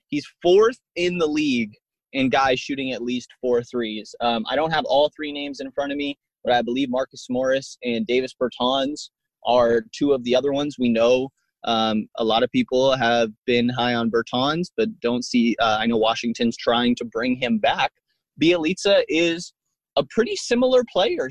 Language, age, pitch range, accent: English, 20-39, 120-155 Hz, American